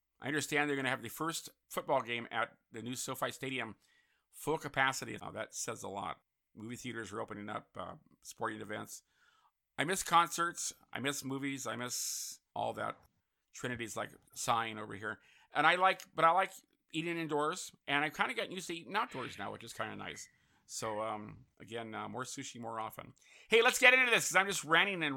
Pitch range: 130-165 Hz